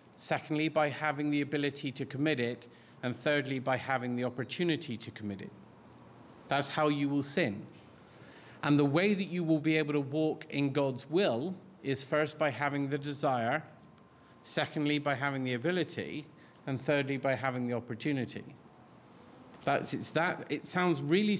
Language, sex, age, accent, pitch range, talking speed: English, male, 40-59, British, 120-150 Hz, 165 wpm